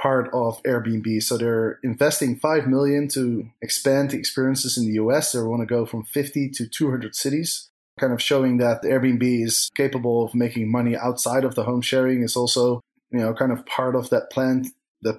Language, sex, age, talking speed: English, male, 20-39, 200 wpm